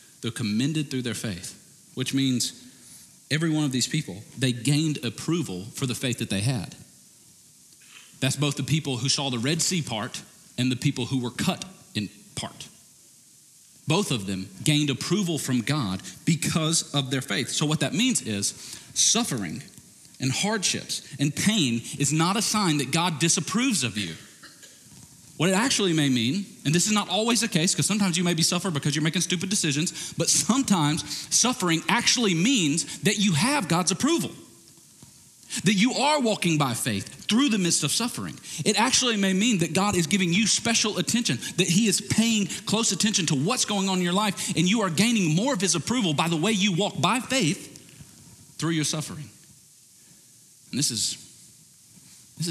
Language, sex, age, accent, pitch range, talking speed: English, male, 40-59, American, 140-200 Hz, 180 wpm